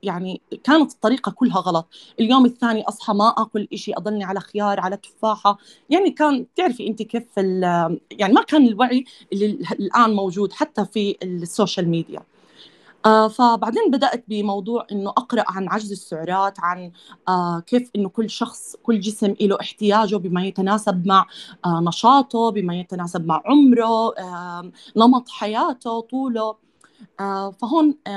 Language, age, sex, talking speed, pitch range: Arabic, 20-39, female, 140 wpm, 190-235 Hz